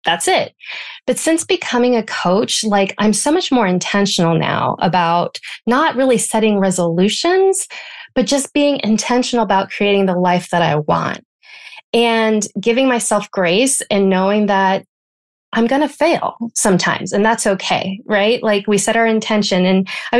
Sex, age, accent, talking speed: female, 20-39, American, 155 wpm